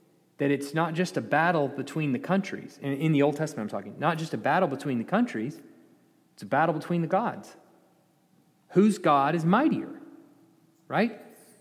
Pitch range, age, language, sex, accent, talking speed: 135-185 Hz, 30-49, English, male, American, 170 wpm